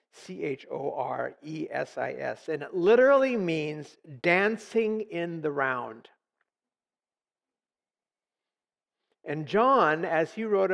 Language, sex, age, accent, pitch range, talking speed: Polish, male, 50-69, American, 155-220 Hz, 115 wpm